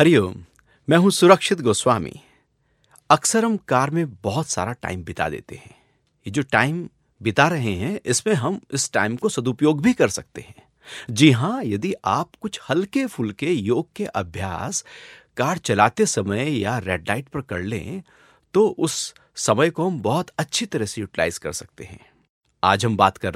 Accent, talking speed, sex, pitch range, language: native, 170 wpm, male, 115-175 Hz, Hindi